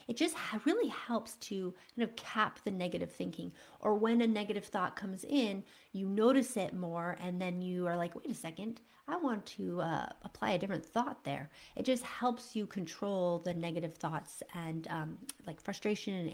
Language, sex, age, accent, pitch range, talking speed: English, female, 30-49, American, 175-220 Hz, 190 wpm